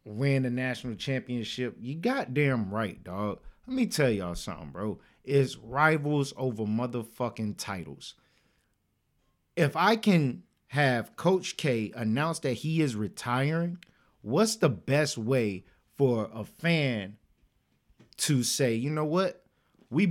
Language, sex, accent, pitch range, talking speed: English, male, American, 120-180 Hz, 130 wpm